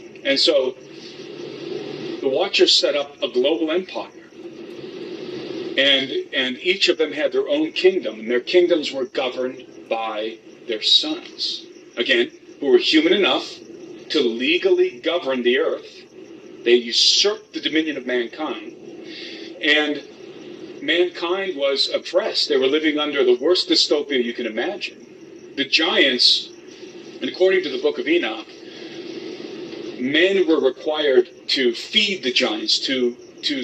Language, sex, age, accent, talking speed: English, male, 40-59, American, 130 wpm